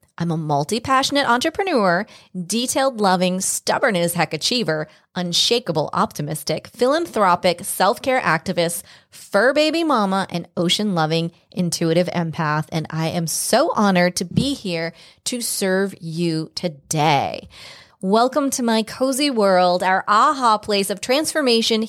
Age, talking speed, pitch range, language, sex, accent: 30-49, 120 wpm, 160-210 Hz, English, female, American